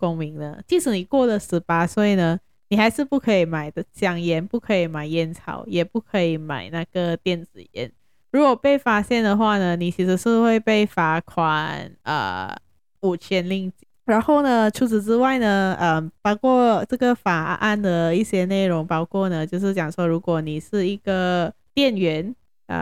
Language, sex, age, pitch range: Chinese, female, 20-39, 170-215 Hz